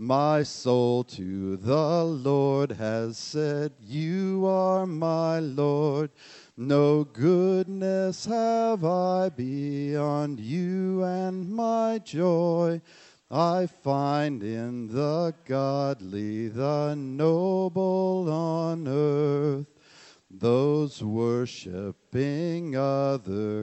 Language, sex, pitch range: English, male, 135-170 Hz